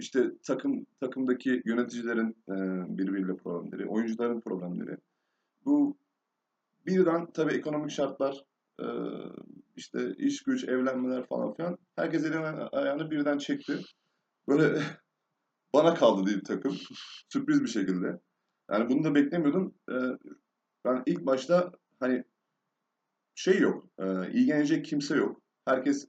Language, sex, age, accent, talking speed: Turkish, male, 30-49, native, 120 wpm